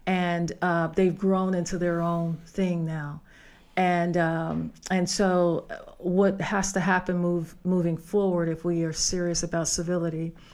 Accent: American